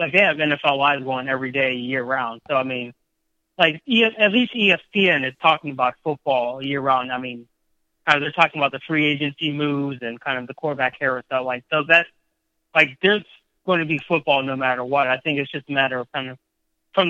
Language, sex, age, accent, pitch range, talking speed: English, male, 30-49, American, 135-160 Hz, 210 wpm